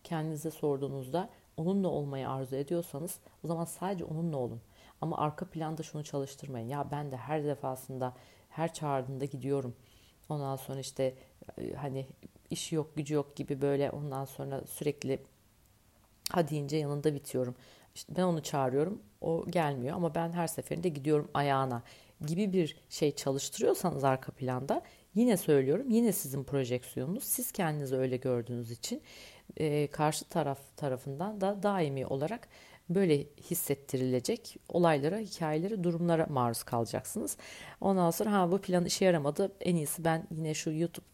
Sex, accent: female, native